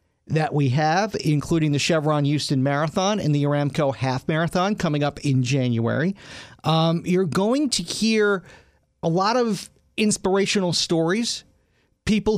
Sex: male